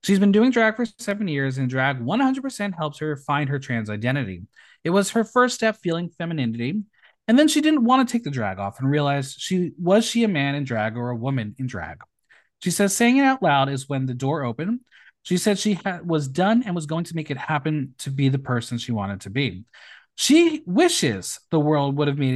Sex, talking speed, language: male, 230 wpm, English